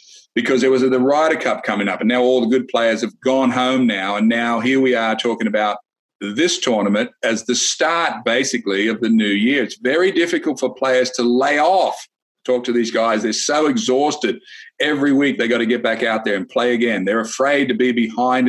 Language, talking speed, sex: English, 215 wpm, male